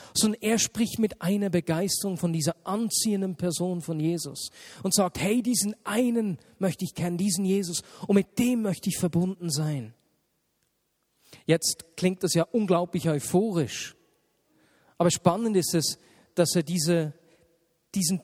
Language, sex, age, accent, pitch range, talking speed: German, male, 40-59, German, 150-195 Hz, 140 wpm